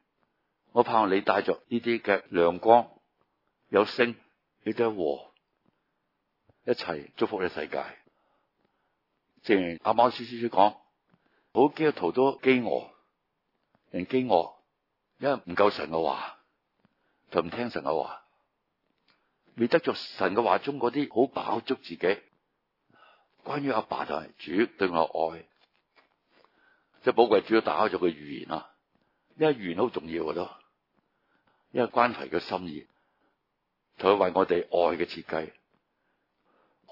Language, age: Chinese, 60-79